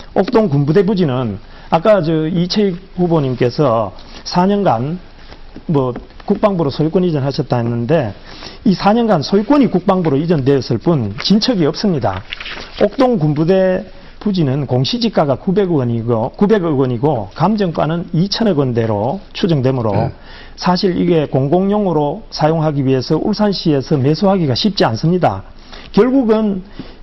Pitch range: 130-200 Hz